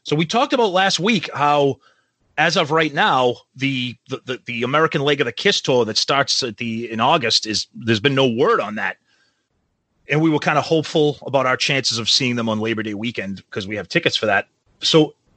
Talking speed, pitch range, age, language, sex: 220 wpm, 125-175 Hz, 30-49, English, male